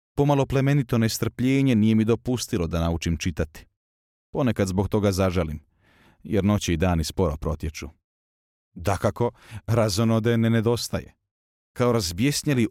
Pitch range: 85-115 Hz